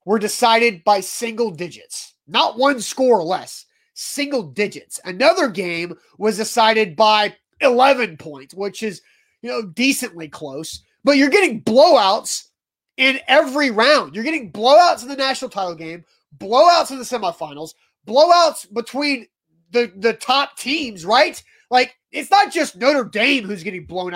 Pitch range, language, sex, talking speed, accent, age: 210-285 Hz, English, male, 150 wpm, American, 30-49